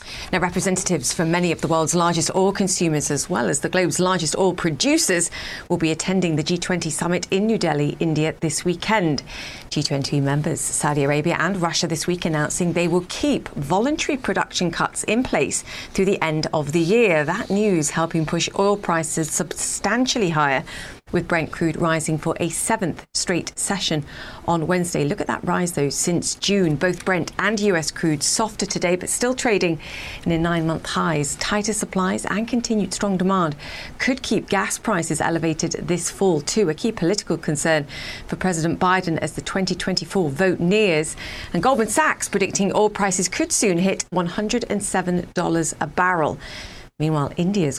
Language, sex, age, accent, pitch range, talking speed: English, female, 40-59, British, 160-195 Hz, 165 wpm